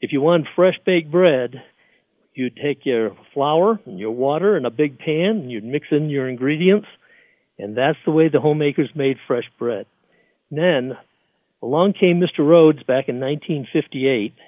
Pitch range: 135-180 Hz